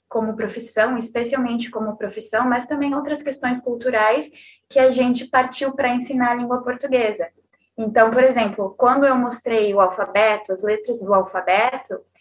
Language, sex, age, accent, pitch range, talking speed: Portuguese, female, 10-29, Brazilian, 220-255 Hz, 150 wpm